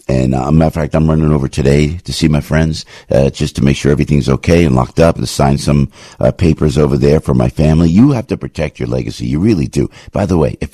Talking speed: 265 wpm